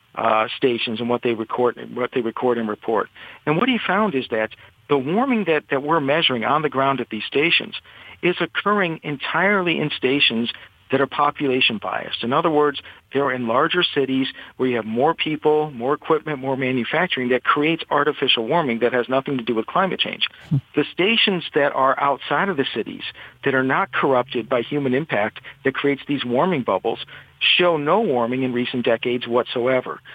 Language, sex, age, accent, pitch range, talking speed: English, male, 50-69, American, 120-150 Hz, 185 wpm